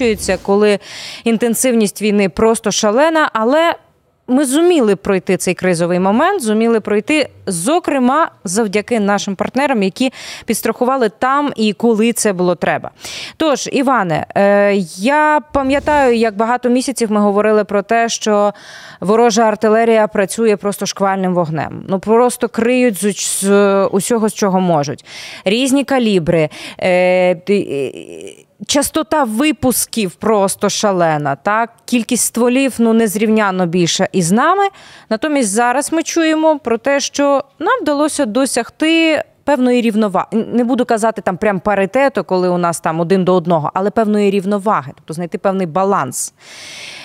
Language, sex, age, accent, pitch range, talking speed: Ukrainian, female, 20-39, native, 195-260 Hz, 130 wpm